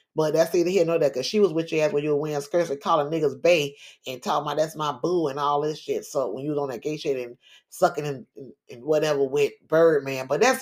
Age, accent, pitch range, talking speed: 30-49, American, 155-205 Hz, 260 wpm